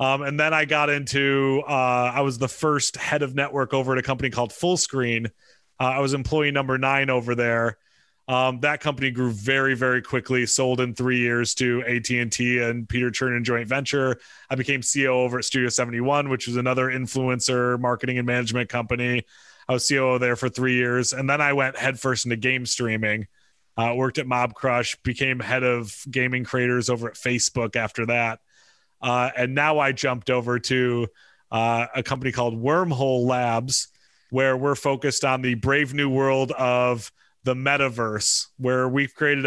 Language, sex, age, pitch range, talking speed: English, male, 30-49, 125-140 Hz, 180 wpm